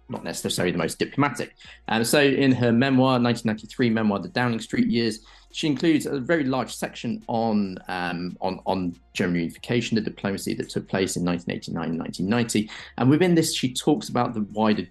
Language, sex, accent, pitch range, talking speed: English, male, British, 100-130 Hz, 180 wpm